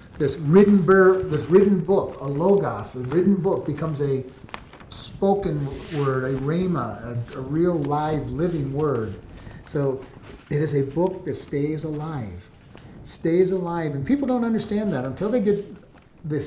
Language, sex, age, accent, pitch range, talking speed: English, male, 50-69, American, 130-175 Hz, 155 wpm